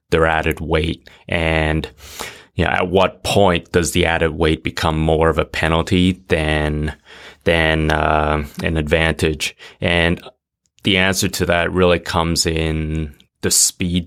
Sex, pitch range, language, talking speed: male, 80-90 Hz, English, 135 wpm